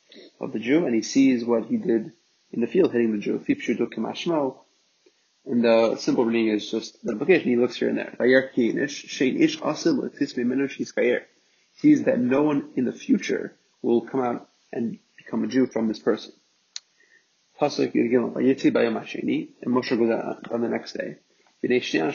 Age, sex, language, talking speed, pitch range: 30-49, male, English, 150 wpm, 115-140 Hz